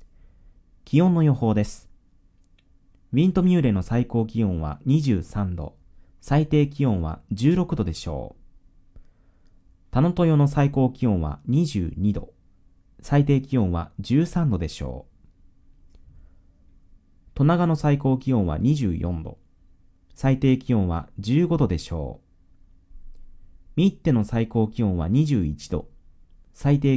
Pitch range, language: 85-135 Hz, Japanese